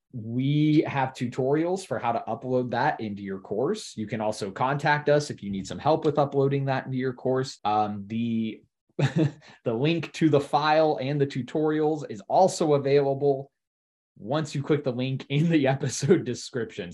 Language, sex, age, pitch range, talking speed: English, male, 20-39, 110-140 Hz, 175 wpm